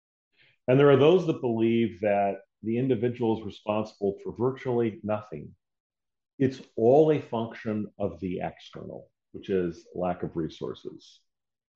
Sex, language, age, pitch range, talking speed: male, English, 40-59, 90-115 Hz, 135 wpm